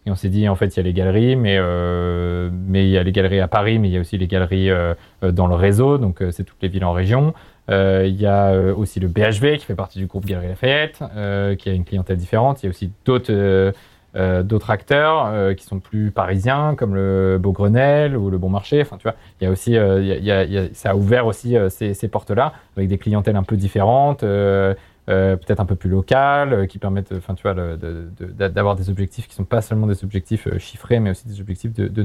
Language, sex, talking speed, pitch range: French, male, 245 wpm, 95-110 Hz